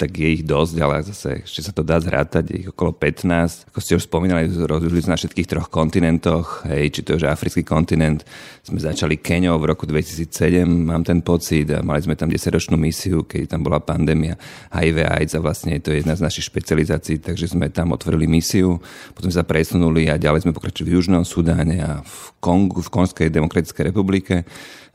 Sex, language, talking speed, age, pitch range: male, Slovak, 195 wpm, 40-59, 80-85 Hz